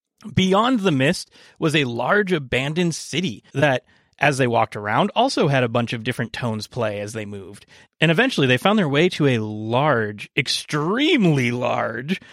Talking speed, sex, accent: 170 wpm, male, American